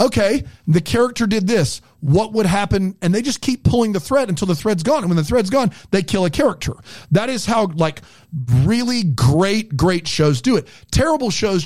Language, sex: English, male